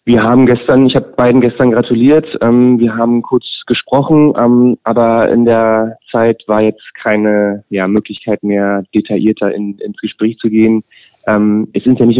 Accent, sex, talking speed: German, male, 170 wpm